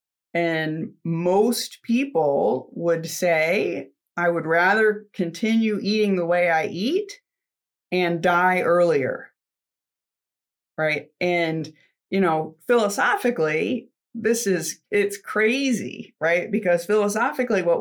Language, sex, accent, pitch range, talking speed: English, female, American, 165-215 Hz, 100 wpm